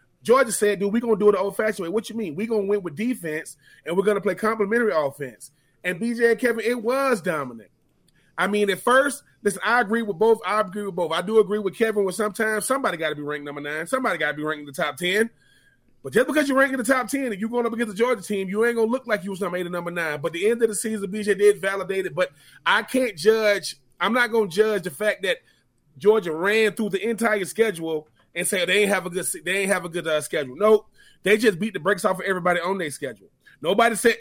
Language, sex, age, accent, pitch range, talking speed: English, male, 30-49, American, 170-225 Hz, 270 wpm